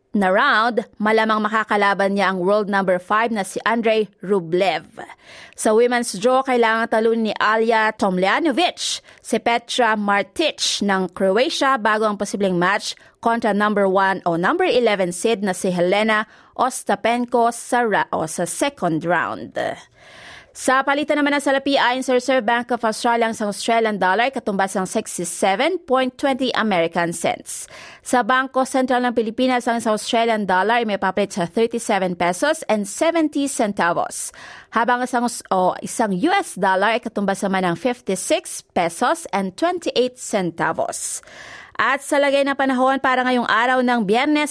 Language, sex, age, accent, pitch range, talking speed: Filipino, female, 20-39, native, 195-255 Hz, 140 wpm